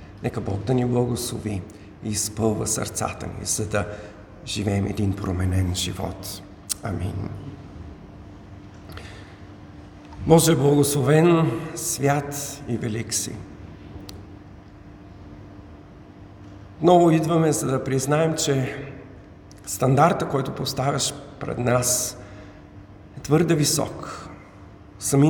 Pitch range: 100-135 Hz